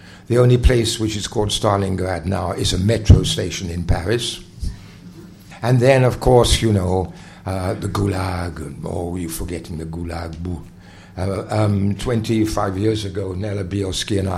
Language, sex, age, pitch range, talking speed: English, male, 60-79, 90-105 Hz, 150 wpm